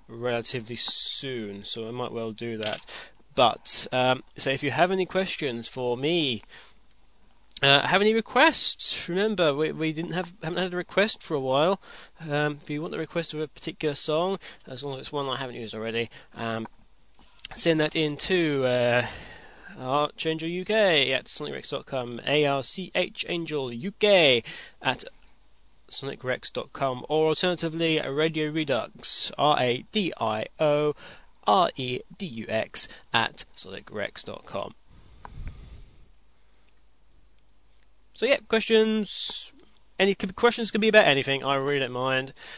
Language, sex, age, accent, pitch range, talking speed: English, male, 20-39, British, 125-170 Hz, 125 wpm